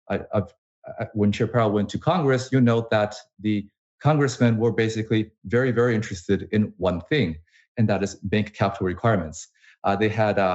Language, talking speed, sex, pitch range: English, 165 wpm, male, 95-115 Hz